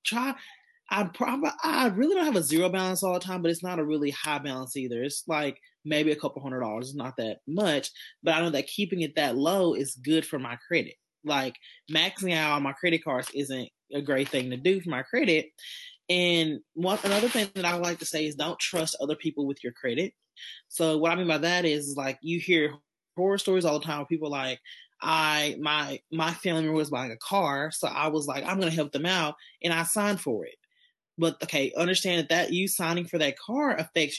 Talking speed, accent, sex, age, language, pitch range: 225 wpm, American, male, 20-39, English, 150-185 Hz